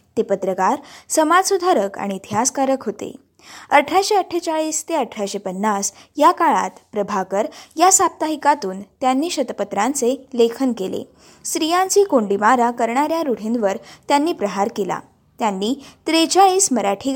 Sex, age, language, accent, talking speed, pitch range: female, 20-39, Marathi, native, 105 wpm, 215-325 Hz